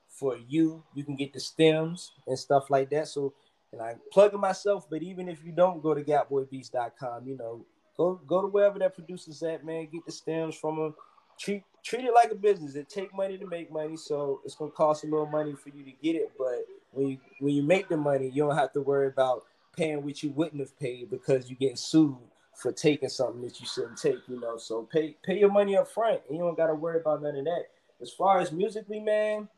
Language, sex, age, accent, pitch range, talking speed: English, male, 20-39, American, 140-175 Hz, 245 wpm